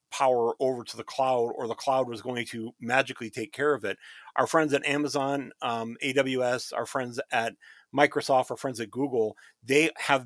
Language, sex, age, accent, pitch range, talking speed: English, male, 40-59, American, 120-150 Hz, 185 wpm